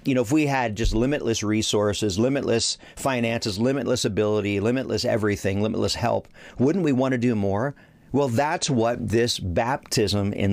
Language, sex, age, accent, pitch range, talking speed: English, male, 40-59, American, 100-135 Hz, 160 wpm